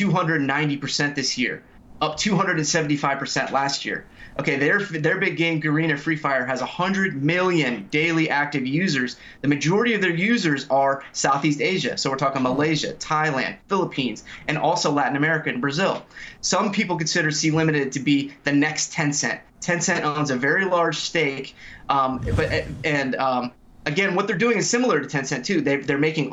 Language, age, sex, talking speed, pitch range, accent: English, 20-39, male, 165 wpm, 135-170 Hz, American